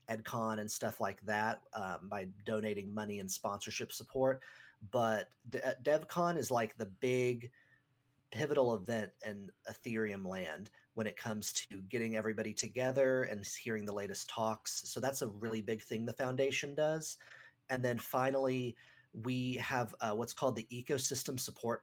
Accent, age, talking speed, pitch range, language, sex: American, 30-49, 150 wpm, 110-130 Hz, English, male